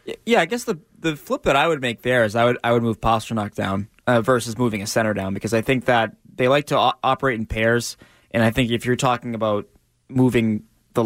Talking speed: 245 wpm